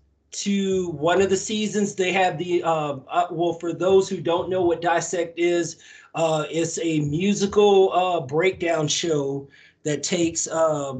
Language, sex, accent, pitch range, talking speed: English, male, American, 145-175 Hz, 155 wpm